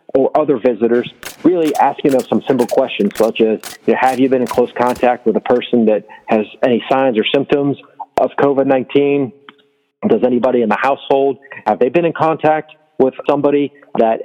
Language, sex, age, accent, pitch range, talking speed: English, male, 40-59, American, 125-145 Hz, 175 wpm